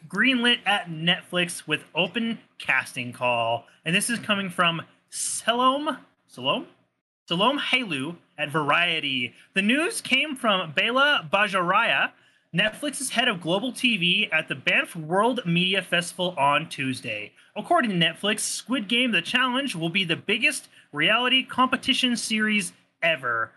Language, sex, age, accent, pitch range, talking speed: English, male, 30-49, American, 165-255 Hz, 130 wpm